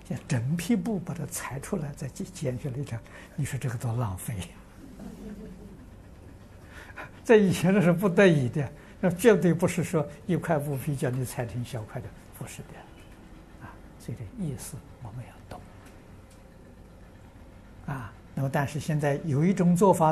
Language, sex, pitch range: Chinese, male, 95-140 Hz